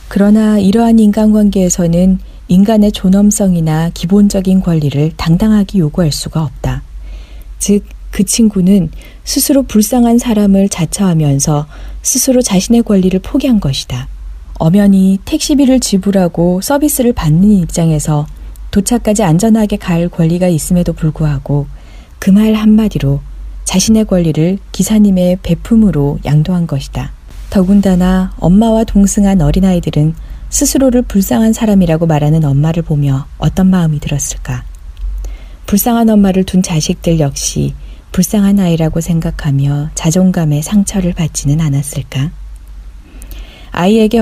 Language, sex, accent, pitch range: Korean, female, native, 150-205 Hz